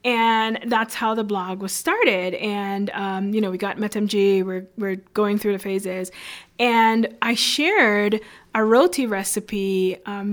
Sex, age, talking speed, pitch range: female, 20-39, 155 wpm, 195-240 Hz